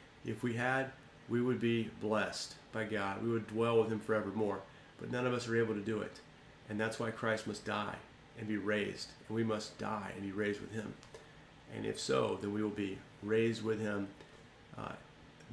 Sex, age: male, 40-59